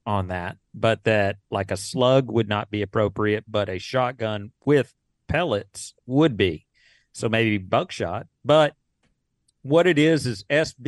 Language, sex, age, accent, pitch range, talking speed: English, male, 40-59, American, 105-140 Hz, 150 wpm